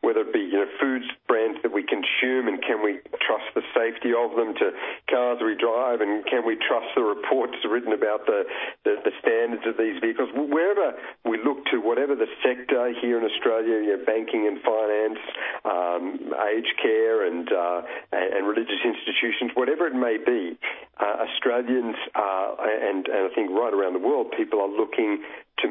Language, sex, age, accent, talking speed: English, male, 50-69, Australian, 185 wpm